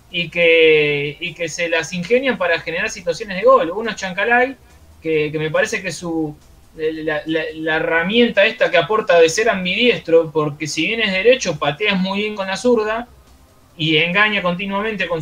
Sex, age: male, 20-39